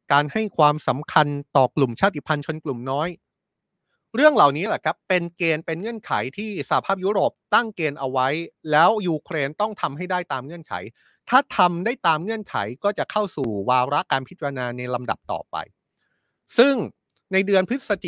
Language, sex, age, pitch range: Thai, male, 30-49, 130-180 Hz